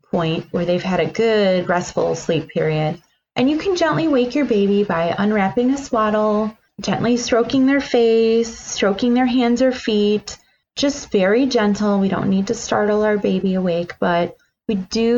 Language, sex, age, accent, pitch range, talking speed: English, female, 30-49, American, 180-230 Hz, 170 wpm